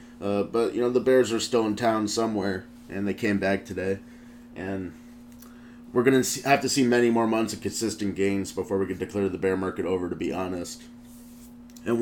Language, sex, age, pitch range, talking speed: English, male, 30-49, 100-120 Hz, 205 wpm